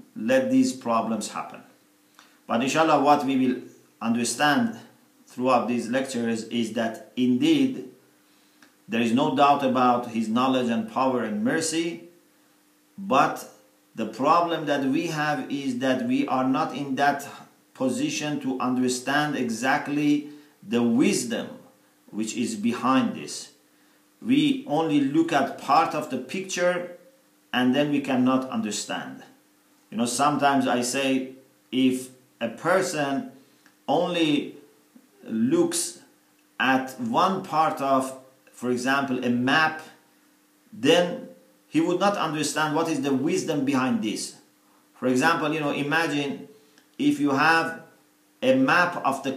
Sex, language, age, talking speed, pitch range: male, English, 50-69, 125 wpm, 125-175 Hz